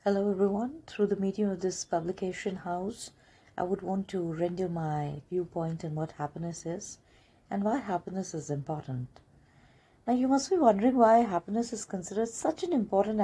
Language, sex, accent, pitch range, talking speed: Hindi, female, native, 160-205 Hz, 170 wpm